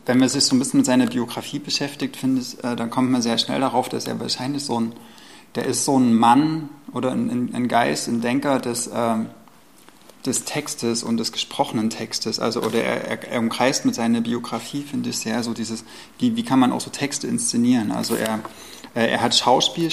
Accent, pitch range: German, 115-145 Hz